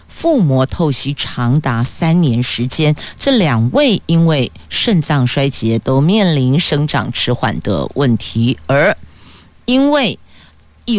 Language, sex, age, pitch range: Chinese, female, 50-69, 120-165 Hz